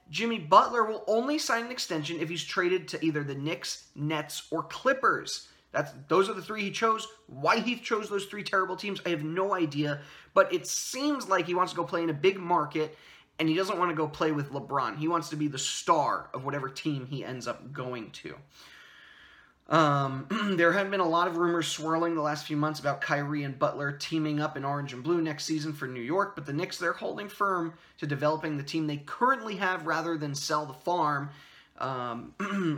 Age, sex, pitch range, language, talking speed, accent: 20-39, male, 145-195 Hz, English, 215 wpm, American